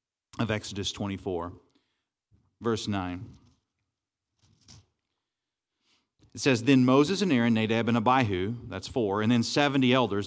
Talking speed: 115 wpm